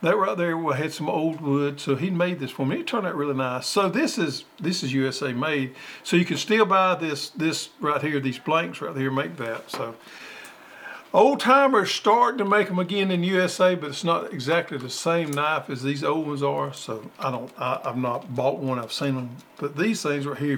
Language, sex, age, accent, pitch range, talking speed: English, male, 50-69, American, 135-175 Hz, 225 wpm